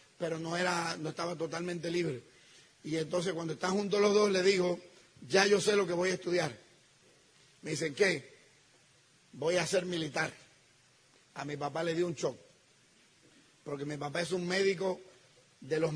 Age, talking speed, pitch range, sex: 30-49, 175 wpm, 165-195 Hz, male